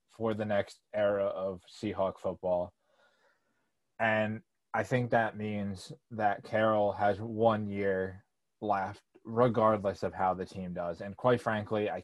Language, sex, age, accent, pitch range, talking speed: English, male, 20-39, American, 95-115 Hz, 140 wpm